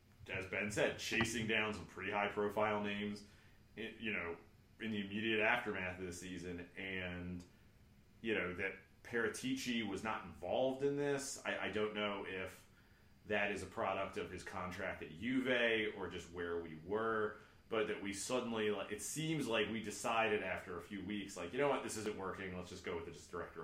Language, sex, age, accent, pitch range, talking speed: English, male, 30-49, American, 95-110 Hz, 190 wpm